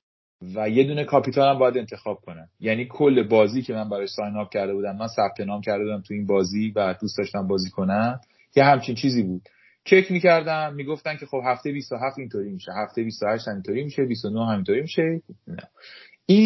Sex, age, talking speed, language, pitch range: male, 30-49, 195 wpm, Persian, 115-155 Hz